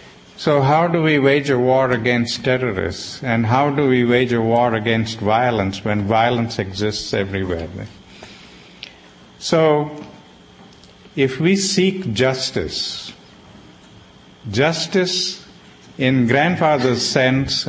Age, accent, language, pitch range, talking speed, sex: 50-69, Indian, English, 110-145 Hz, 105 wpm, male